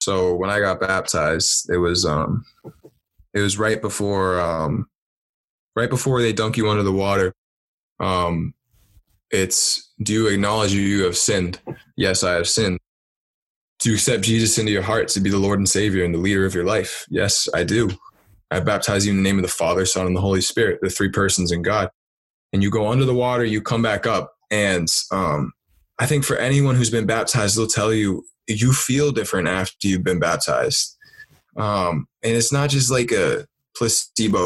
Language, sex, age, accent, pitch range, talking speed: English, male, 20-39, American, 95-115 Hz, 195 wpm